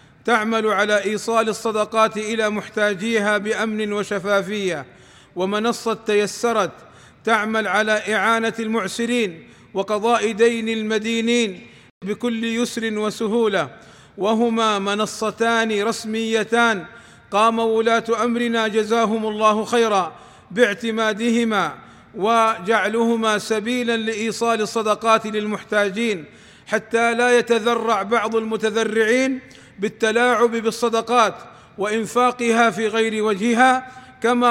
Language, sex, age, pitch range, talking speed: Arabic, male, 40-59, 215-235 Hz, 80 wpm